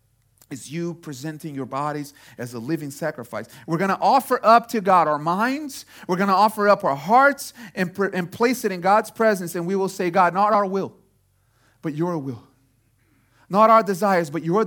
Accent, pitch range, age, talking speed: American, 125-195 Hz, 40-59, 195 wpm